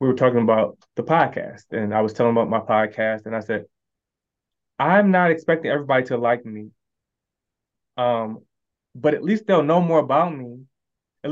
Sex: male